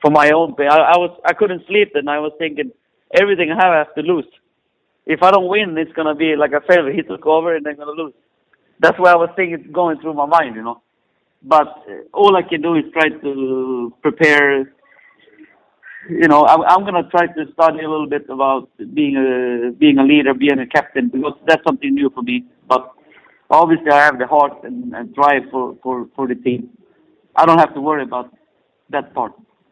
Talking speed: 215 wpm